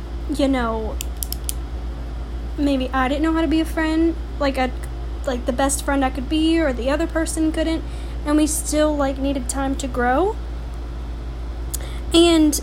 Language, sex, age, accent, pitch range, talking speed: English, female, 10-29, American, 235-310 Hz, 160 wpm